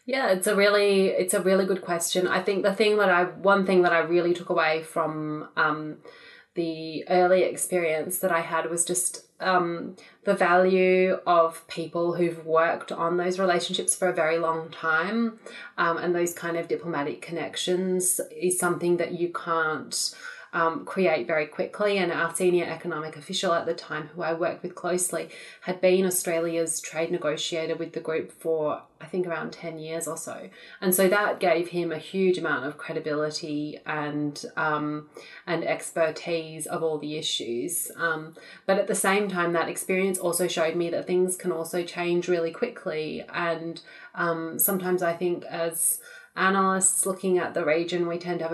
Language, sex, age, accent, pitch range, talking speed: English, female, 20-39, Australian, 165-185 Hz, 175 wpm